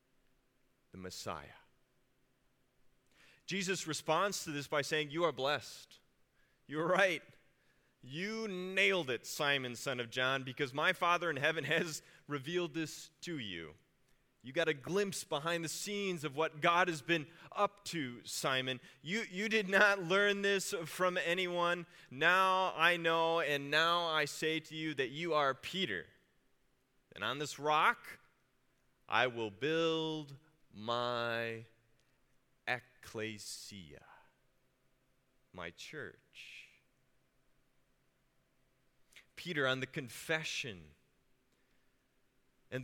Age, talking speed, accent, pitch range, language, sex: 30-49, 115 wpm, American, 130-170 Hz, English, male